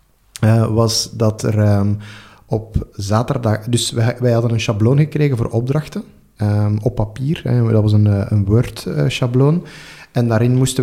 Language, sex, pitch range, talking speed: Dutch, male, 110-135 Hz, 150 wpm